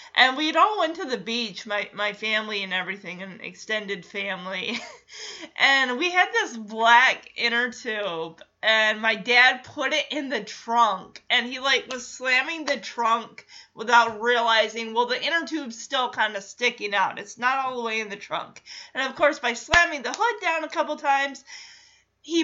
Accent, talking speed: American, 180 wpm